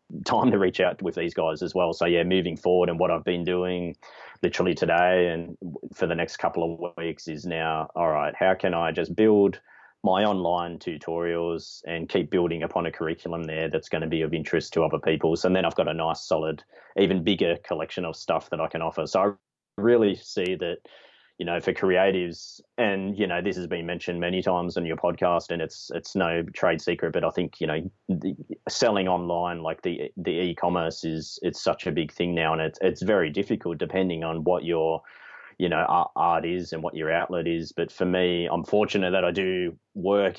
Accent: Australian